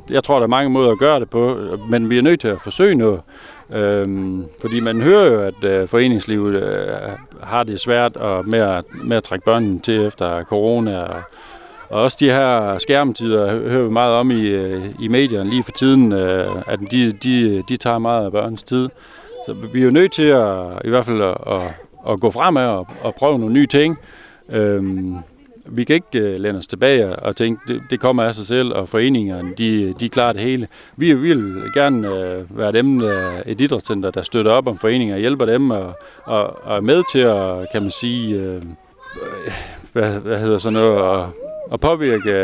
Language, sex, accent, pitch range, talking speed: Danish, male, native, 100-125 Hz, 185 wpm